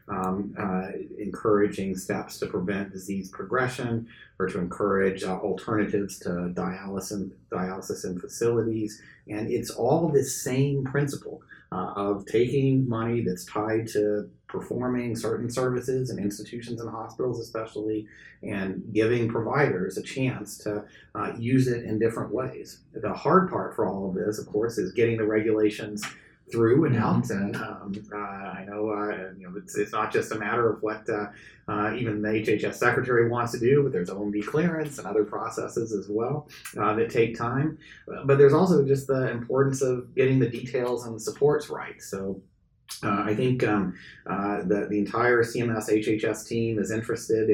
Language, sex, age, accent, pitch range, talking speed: English, male, 30-49, American, 100-120 Hz, 170 wpm